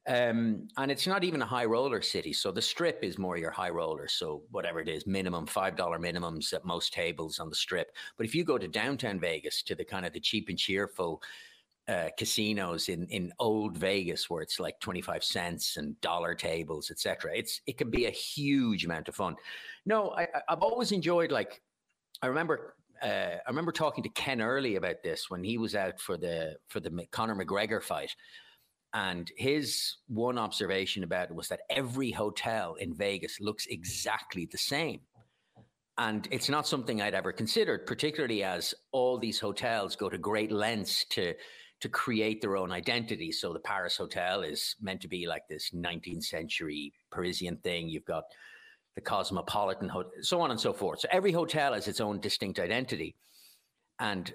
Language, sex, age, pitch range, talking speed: English, male, 50-69, 95-145 Hz, 190 wpm